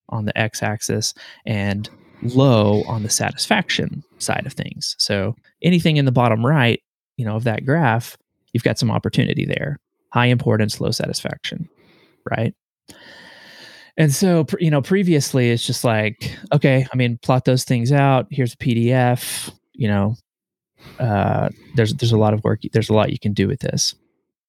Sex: male